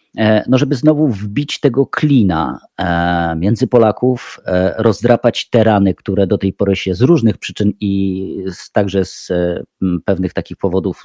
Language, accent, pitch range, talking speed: Polish, native, 95-115 Hz, 135 wpm